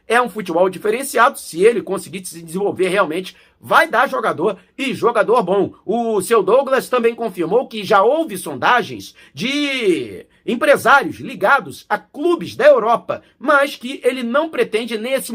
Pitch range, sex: 195-270 Hz, male